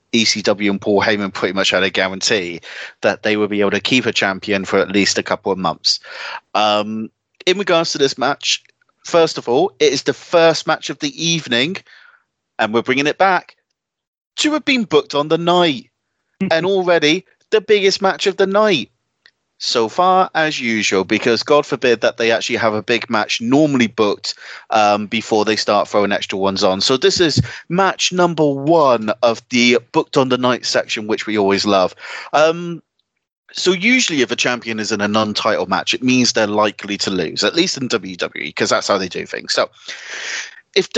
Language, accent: English, British